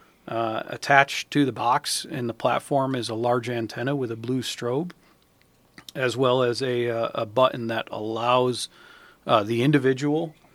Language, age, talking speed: English, 40-59, 155 wpm